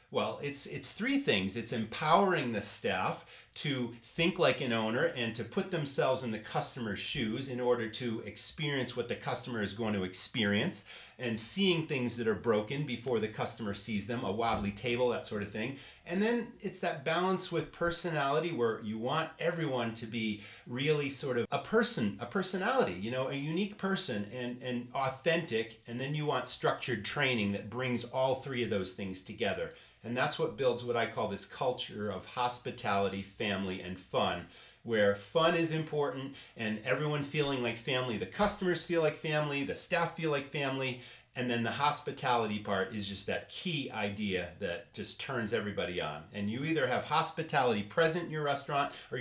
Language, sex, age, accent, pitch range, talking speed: English, male, 40-59, American, 110-155 Hz, 185 wpm